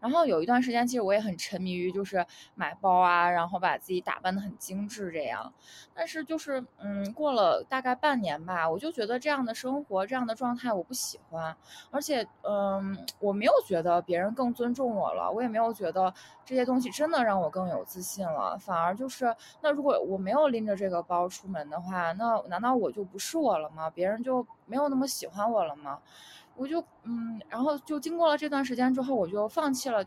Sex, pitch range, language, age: female, 195-265 Hz, Chinese, 20-39